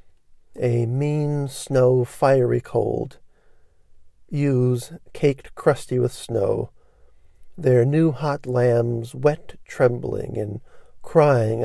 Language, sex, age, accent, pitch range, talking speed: English, male, 50-69, American, 115-140 Hz, 95 wpm